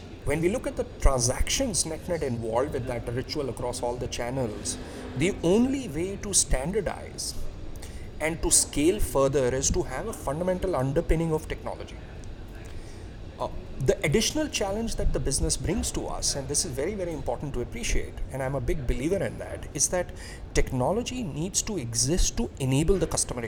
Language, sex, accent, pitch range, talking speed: English, male, Indian, 110-160 Hz, 170 wpm